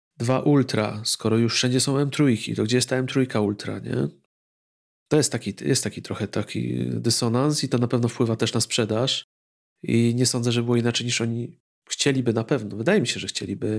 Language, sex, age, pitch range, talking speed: Polish, male, 40-59, 110-130 Hz, 210 wpm